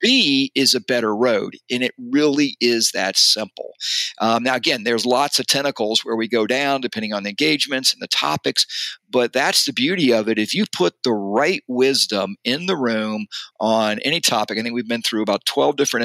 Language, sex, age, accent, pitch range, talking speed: English, male, 50-69, American, 110-135 Hz, 205 wpm